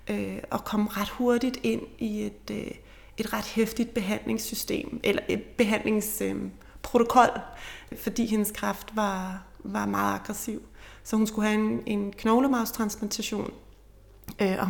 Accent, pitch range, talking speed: Danish, 205-230 Hz, 120 wpm